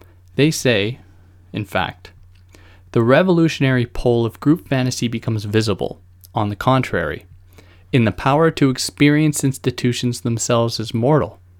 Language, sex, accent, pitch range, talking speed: English, male, American, 95-130 Hz, 125 wpm